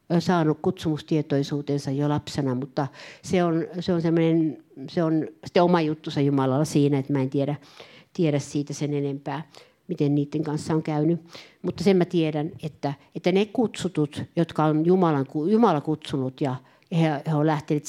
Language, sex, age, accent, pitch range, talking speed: Finnish, female, 60-79, native, 150-210 Hz, 150 wpm